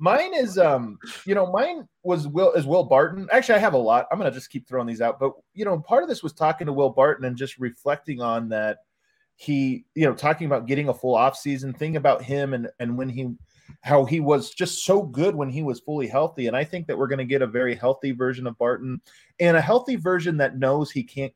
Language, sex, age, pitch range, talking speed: English, male, 20-39, 130-170 Hz, 260 wpm